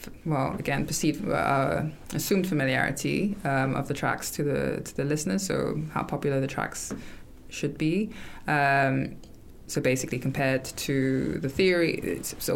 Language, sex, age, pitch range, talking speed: English, female, 20-39, 130-155 Hz, 145 wpm